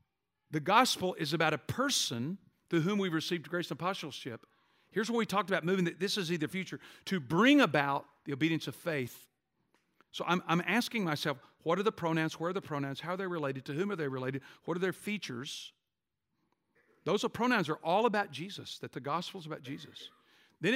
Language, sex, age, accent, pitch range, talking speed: English, male, 50-69, American, 135-180 Hz, 205 wpm